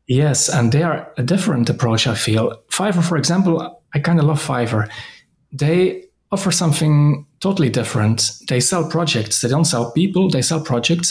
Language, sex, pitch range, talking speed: English, male, 125-155 Hz, 175 wpm